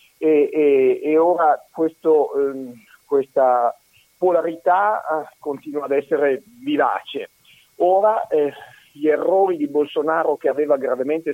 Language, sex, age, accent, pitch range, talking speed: Italian, male, 50-69, native, 140-180 Hz, 110 wpm